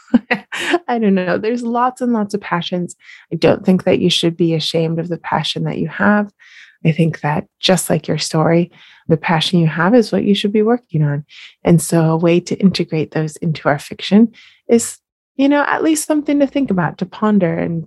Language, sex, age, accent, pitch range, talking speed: English, female, 20-39, American, 165-210 Hz, 210 wpm